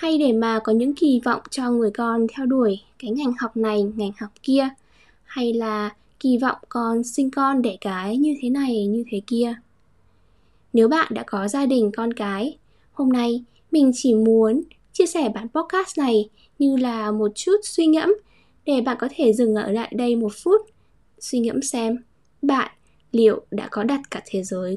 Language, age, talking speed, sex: Vietnamese, 10-29, 190 wpm, female